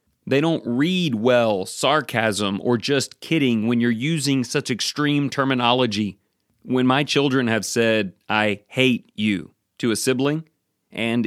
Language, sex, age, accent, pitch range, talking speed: English, male, 30-49, American, 110-140 Hz, 140 wpm